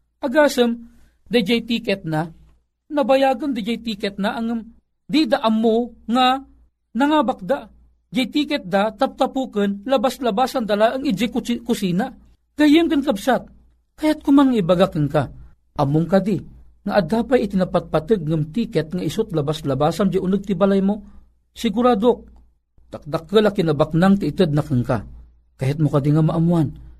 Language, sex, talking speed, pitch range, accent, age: Filipino, male, 140 wpm, 135-225 Hz, native, 50-69